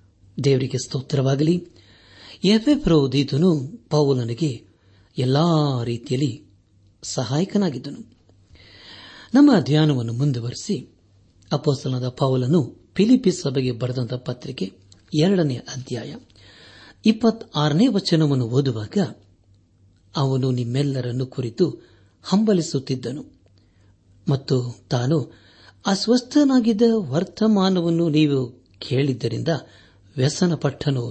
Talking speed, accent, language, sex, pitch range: 65 wpm, native, Kannada, male, 110-160 Hz